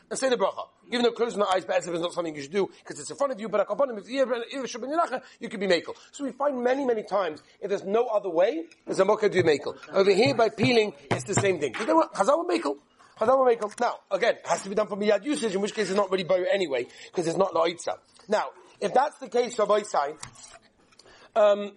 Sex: male